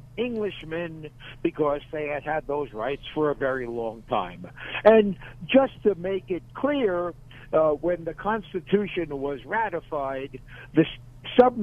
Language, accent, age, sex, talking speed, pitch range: English, American, 60-79, male, 130 wpm, 135-180 Hz